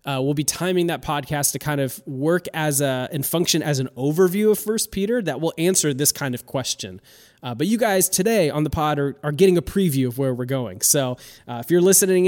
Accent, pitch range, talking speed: American, 135-175 Hz, 240 wpm